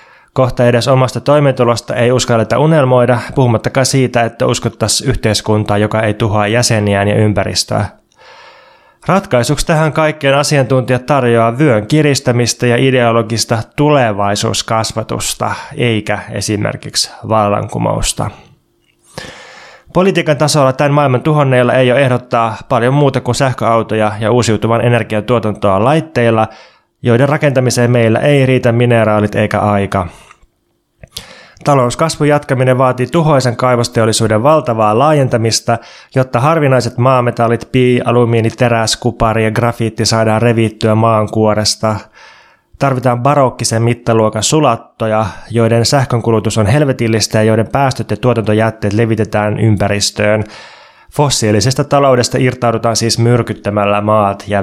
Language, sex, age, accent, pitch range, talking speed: Finnish, male, 20-39, native, 110-130 Hz, 105 wpm